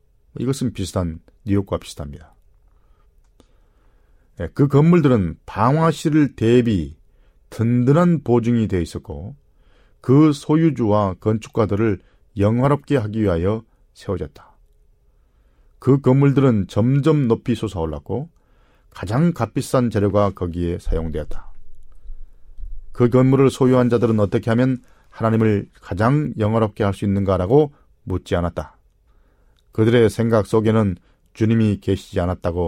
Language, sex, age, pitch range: Korean, male, 40-59, 90-120 Hz